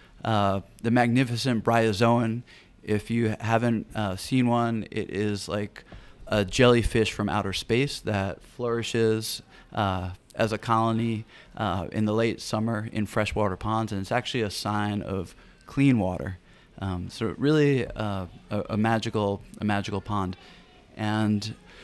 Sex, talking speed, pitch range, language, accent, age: male, 140 wpm, 105-120 Hz, English, American, 30-49